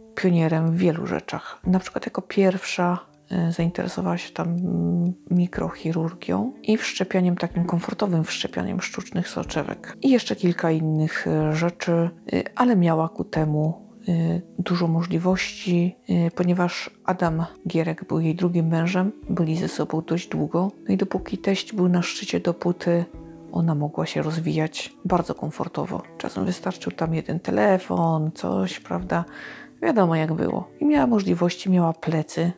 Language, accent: Polish, native